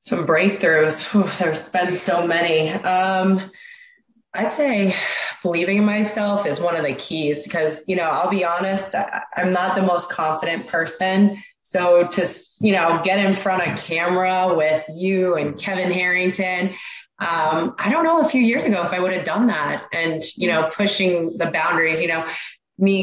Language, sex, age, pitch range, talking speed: English, female, 20-39, 175-205 Hz, 170 wpm